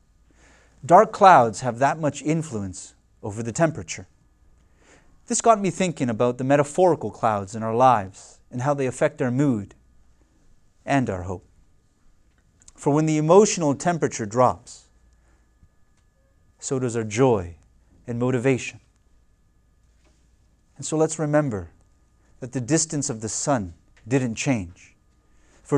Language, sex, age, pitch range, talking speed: English, male, 30-49, 90-140 Hz, 125 wpm